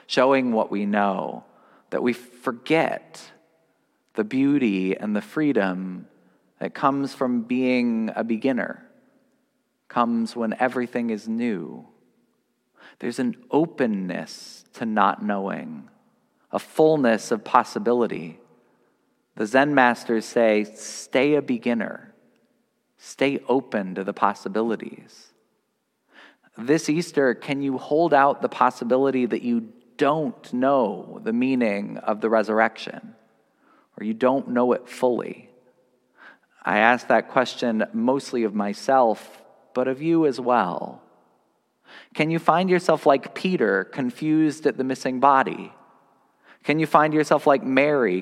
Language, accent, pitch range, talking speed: English, American, 115-150 Hz, 120 wpm